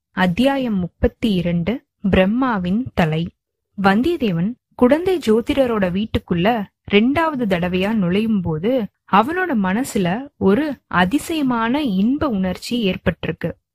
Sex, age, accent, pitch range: female, 20-39, native, 195-275 Hz